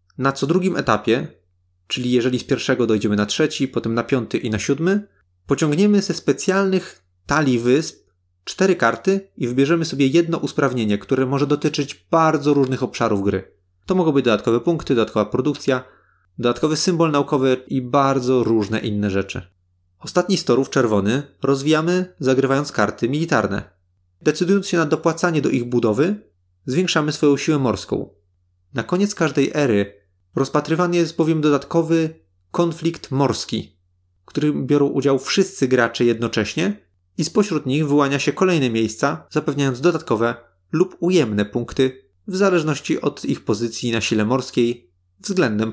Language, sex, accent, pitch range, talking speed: Polish, male, native, 110-160 Hz, 140 wpm